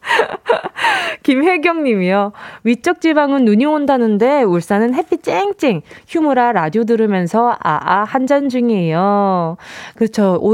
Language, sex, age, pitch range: Korean, female, 20-39, 195-280 Hz